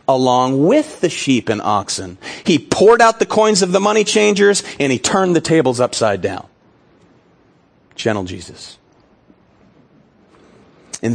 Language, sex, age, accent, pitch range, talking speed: English, male, 40-59, American, 140-205 Hz, 135 wpm